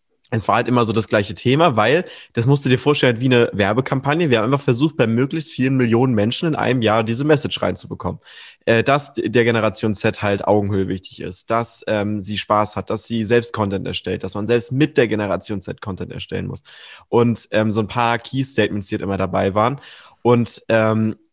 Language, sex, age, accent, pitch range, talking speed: German, male, 20-39, German, 105-120 Hz, 205 wpm